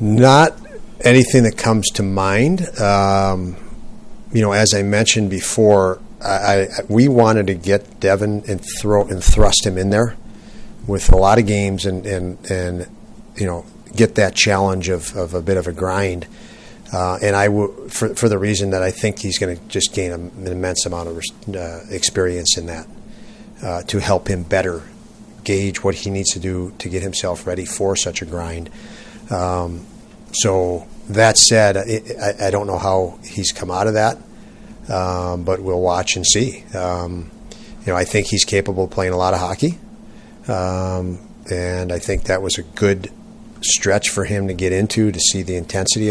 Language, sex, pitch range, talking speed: English, male, 90-105 Hz, 185 wpm